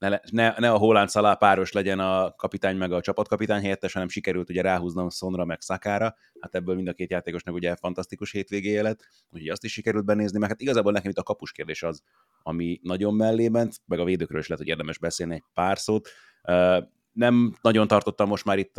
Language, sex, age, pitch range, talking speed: Hungarian, male, 30-49, 90-105 Hz, 210 wpm